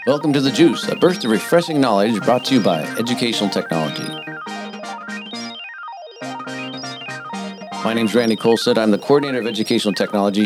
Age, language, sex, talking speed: 40-59, English, male, 150 wpm